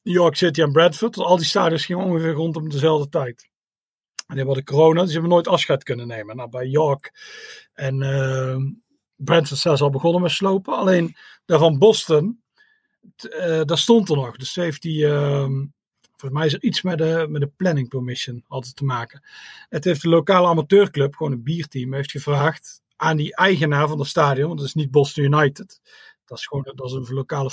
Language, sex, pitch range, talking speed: Dutch, male, 140-180 Hz, 200 wpm